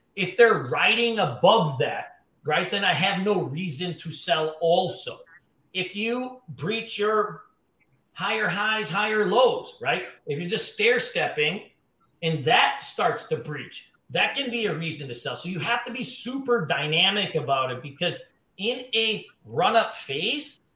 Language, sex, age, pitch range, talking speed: English, male, 40-59, 165-215 Hz, 160 wpm